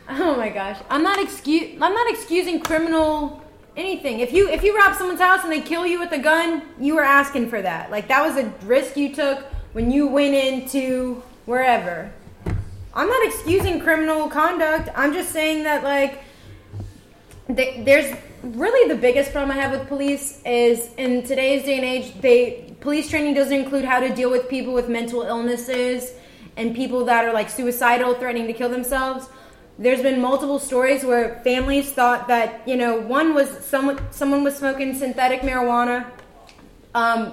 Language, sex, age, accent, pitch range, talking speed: English, female, 20-39, American, 240-280 Hz, 175 wpm